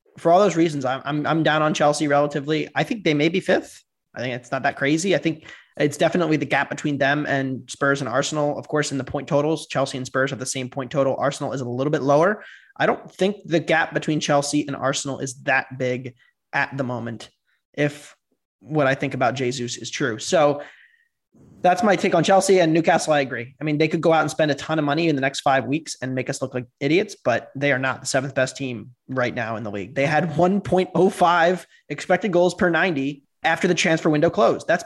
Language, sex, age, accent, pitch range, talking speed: English, male, 20-39, American, 135-165 Hz, 230 wpm